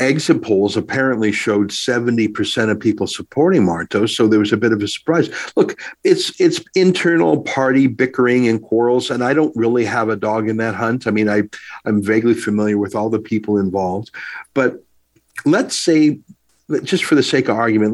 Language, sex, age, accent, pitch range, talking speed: English, male, 50-69, American, 105-130 Hz, 185 wpm